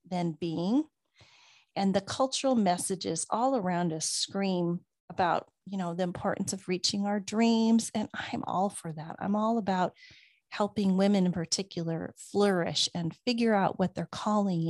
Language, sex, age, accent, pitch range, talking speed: English, female, 40-59, American, 175-205 Hz, 155 wpm